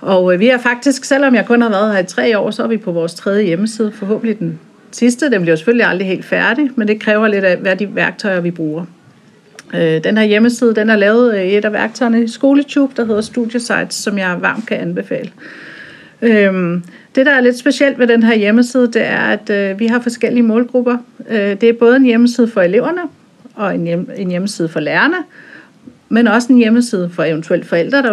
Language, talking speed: Danish, 205 wpm